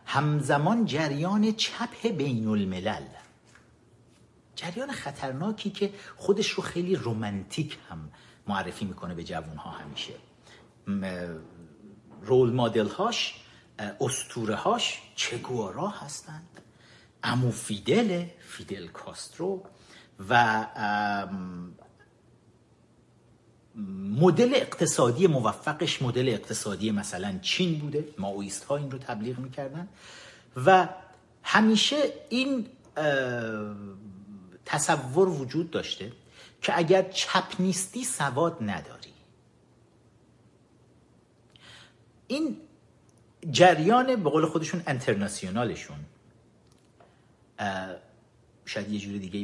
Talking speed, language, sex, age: 80 wpm, Persian, male, 50-69